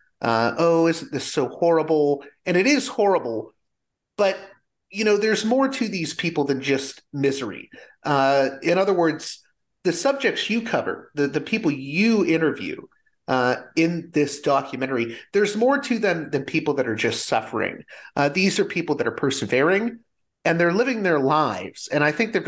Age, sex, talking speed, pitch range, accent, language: 30-49, male, 170 wpm, 135-195 Hz, American, English